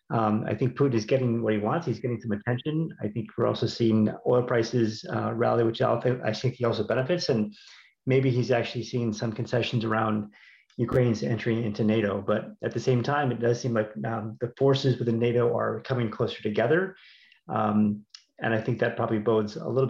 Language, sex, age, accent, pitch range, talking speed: English, male, 30-49, American, 115-135 Hz, 210 wpm